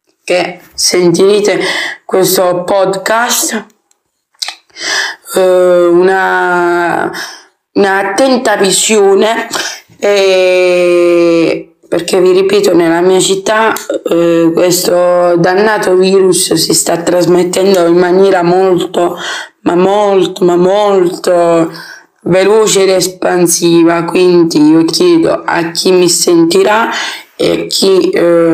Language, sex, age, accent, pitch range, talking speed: Italian, female, 20-39, native, 175-205 Hz, 85 wpm